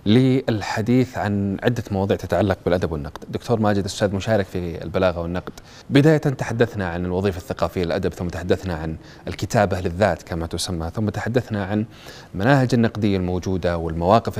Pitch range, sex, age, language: 90-115 Hz, male, 30-49, Arabic